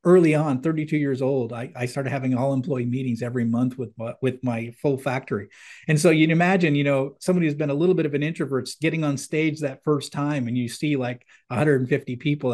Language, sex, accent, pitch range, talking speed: English, male, American, 130-160 Hz, 215 wpm